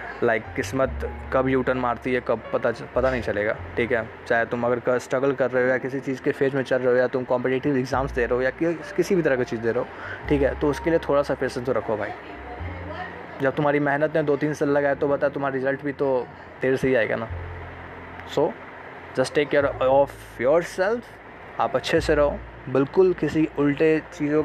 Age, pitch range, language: 20-39, 130-155 Hz, Hindi